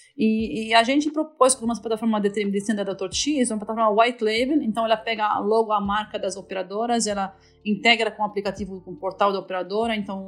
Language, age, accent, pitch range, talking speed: Portuguese, 30-49, Brazilian, 200-250 Hz, 210 wpm